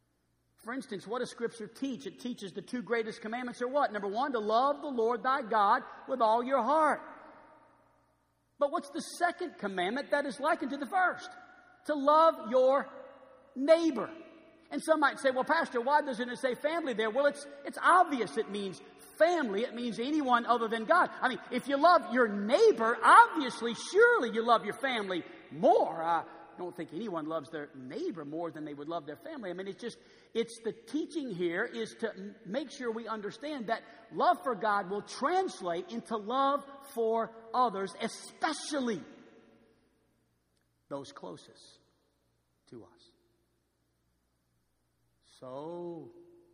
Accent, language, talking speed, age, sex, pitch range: American, English, 160 wpm, 50-69, male, 180-290 Hz